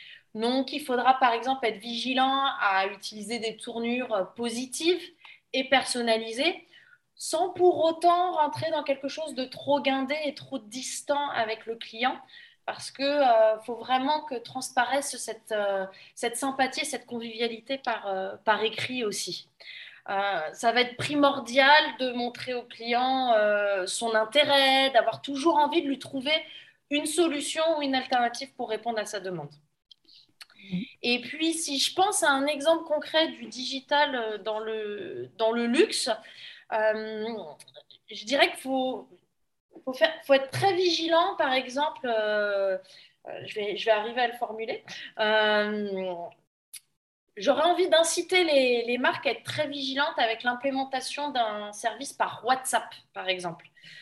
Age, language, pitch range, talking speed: 20-39, French, 225-295 Hz, 145 wpm